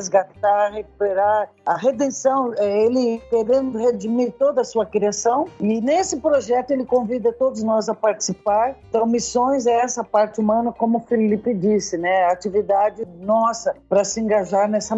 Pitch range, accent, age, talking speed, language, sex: 210-275 Hz, Brazilian, 50-69, 150 wpm, Portuguese, female